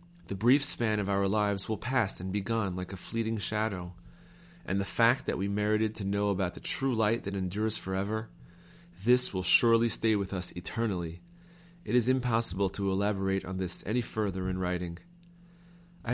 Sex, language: male, English